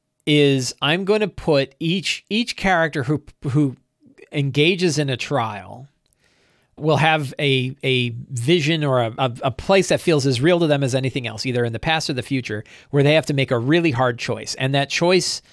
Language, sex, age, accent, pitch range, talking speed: English, male, 40-59, American, 115-145 Hz, 195 wpm